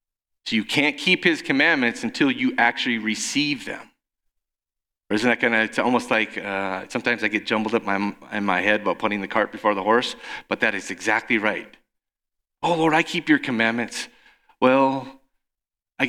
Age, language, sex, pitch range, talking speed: 40-59, English, male, 105-145 Hz, 185 wpm